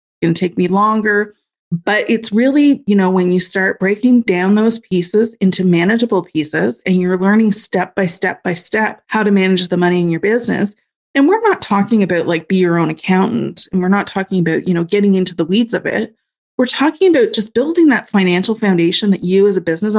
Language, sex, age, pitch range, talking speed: English, female, 30-49, 185-230 Hz, 215 wpm